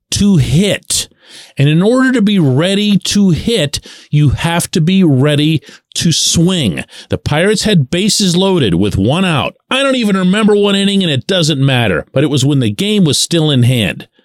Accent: American